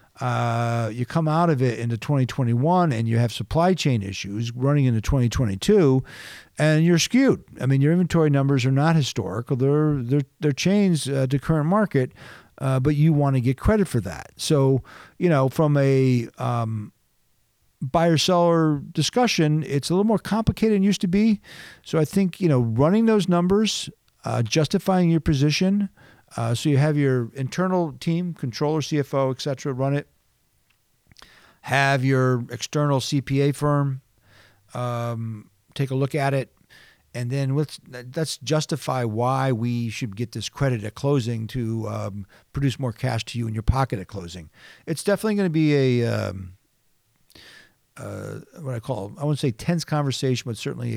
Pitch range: 120-160 Hz